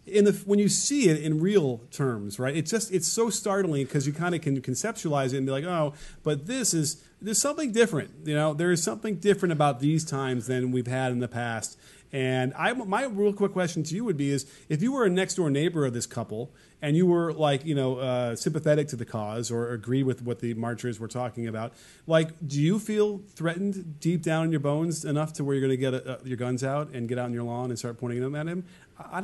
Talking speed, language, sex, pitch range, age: 250 wpm, English, male, 130-185 Hz, 40-59